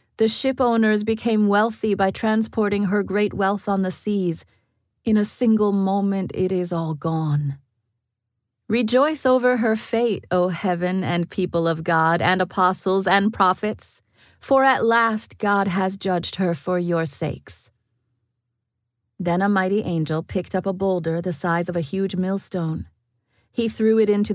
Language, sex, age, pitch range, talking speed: English, female, 30-49, 155-205 Hz, 155 wpm